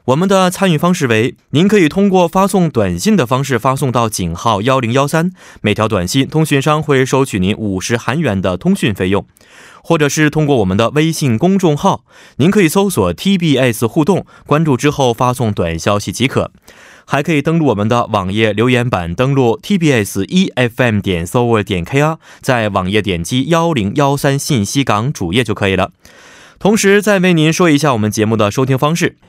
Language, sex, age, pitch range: Korean, male, 20-39, 105-155 Hz